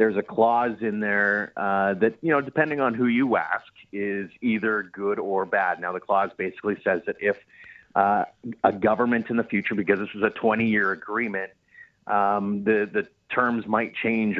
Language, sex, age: English, male, 30-49